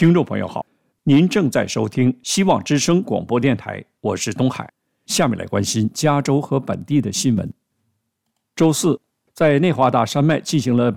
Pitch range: 120-165 Hz